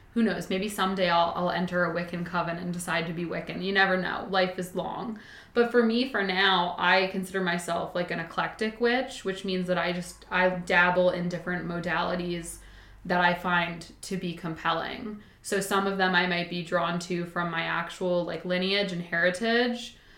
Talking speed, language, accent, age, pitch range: 195 wpm, English, American, 20-39, 175-195 Hz